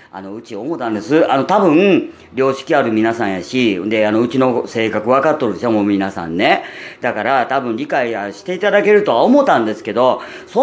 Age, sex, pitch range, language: 40-59, female, 110-185 Hz, Japanese